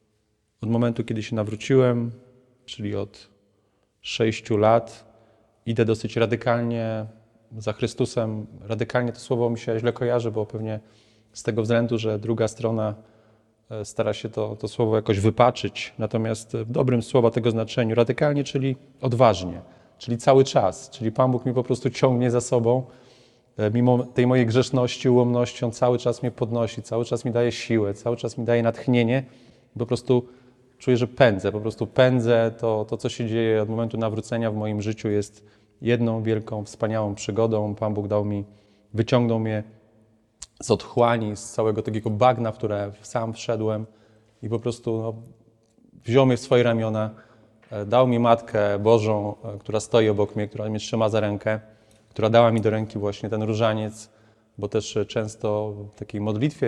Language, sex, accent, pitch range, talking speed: Polish, male, native, 110-120 Hz, 160 wpm